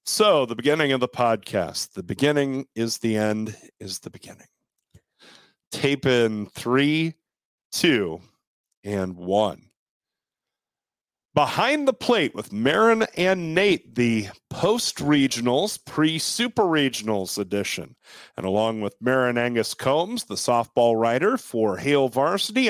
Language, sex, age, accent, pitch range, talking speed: English, male, 40-59, American, 115-150 Hz, 120 wpm